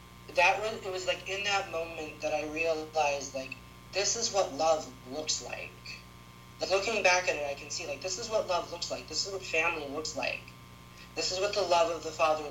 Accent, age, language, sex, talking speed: American, 30-49, English, male, 225 wpm